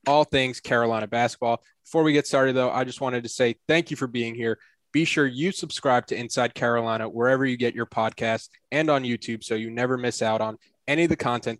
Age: 20-39